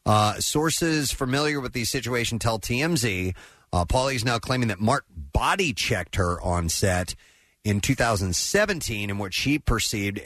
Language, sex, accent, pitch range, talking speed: English, male, American, 95-125 Hz, 150 wpm